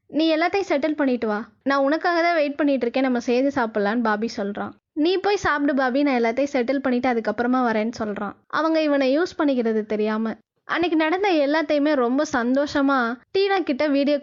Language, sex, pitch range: Tamil, female, 235-310 Hz